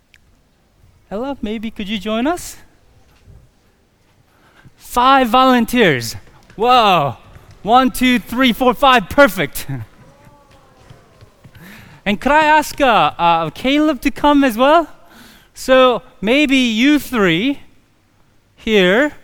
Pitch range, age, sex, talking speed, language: 165-255 Hz, 30-49, male, 95 wpm, English